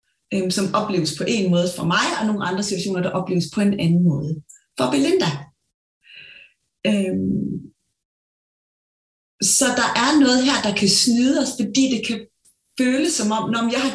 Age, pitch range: 30-49, 180-235 Hz